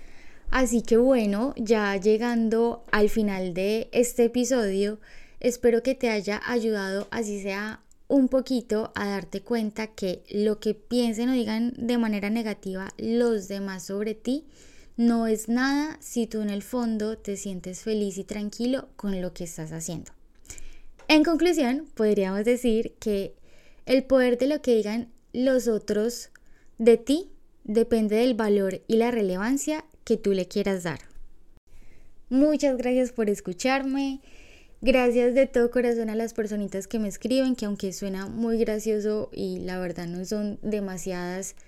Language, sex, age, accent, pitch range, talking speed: Spanish, female, 10-29, Colombian, 195-240 Hz, 150 wpm